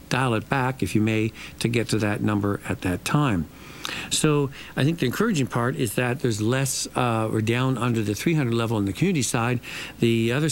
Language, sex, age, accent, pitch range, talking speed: English, male, 60-79, American, 110-130 Hz, 210 wpm